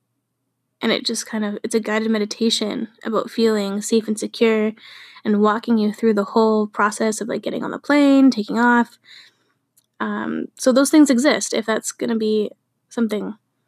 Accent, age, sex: American, 20-39, female